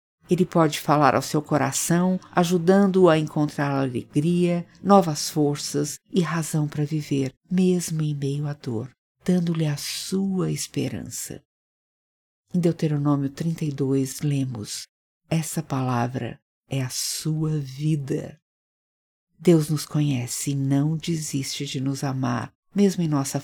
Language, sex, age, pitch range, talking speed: Portuguese, female, 50-69, 135-165 Hz, 120 wpm